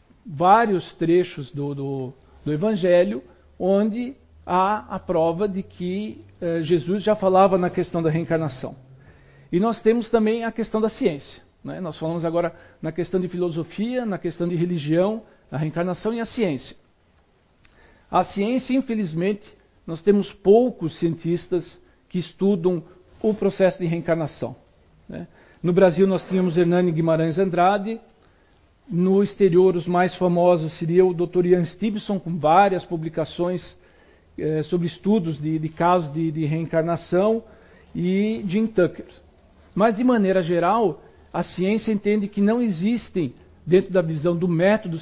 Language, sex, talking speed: Portuguese, male, 140 wpm